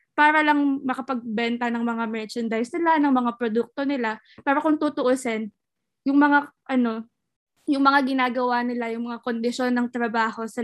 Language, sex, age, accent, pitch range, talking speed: Filipino, female, 20-39, native, 230-260 Hz, 150 wpm